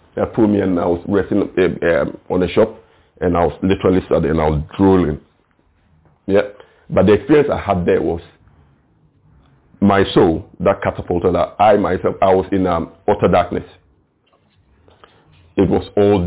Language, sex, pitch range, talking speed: English, male, 90-105 Hz, 160 wpm